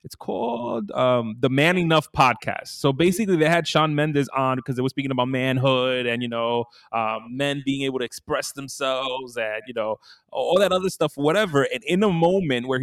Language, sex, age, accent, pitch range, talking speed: English, male, 20-39, American, 130-160 Hz, 200 wpm